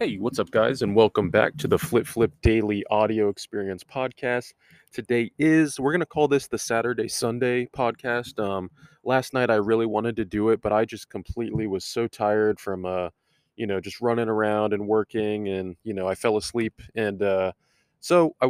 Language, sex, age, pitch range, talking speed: English, male, 20-39, 105-125 Hz, 200 wpm